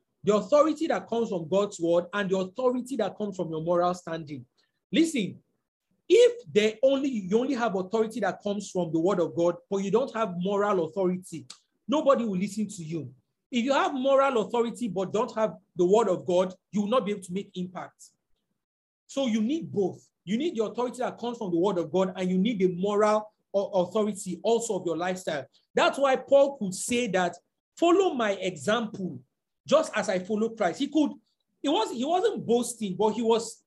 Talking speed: 195 wpm